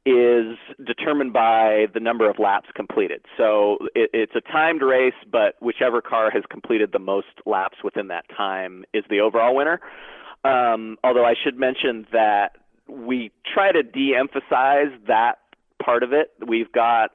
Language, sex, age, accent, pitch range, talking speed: English, male, 30-49, American, 105-130 Hz, 155 wpm